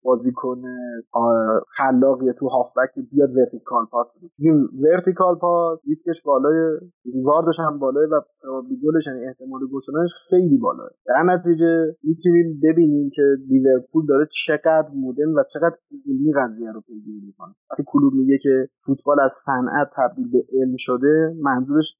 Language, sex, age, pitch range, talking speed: Persian, male, 30-49, 130-170 Hz, 140 wpm